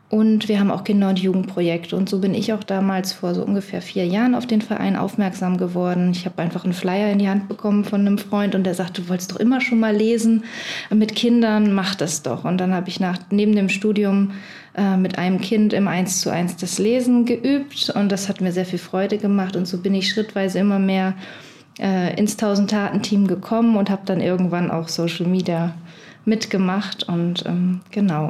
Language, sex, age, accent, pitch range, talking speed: German, female, 20-39, German, 180-205 Hz, 210 wpm